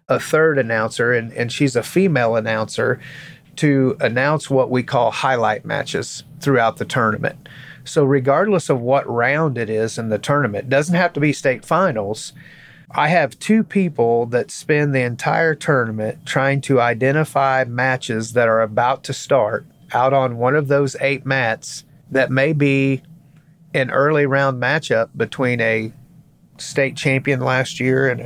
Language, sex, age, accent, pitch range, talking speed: English, male, 30-49, American, 125-150 Hz, 155 wpm